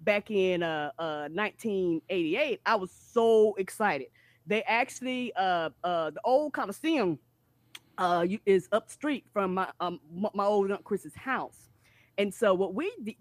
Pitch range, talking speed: 175-225 Hz, 160 wpm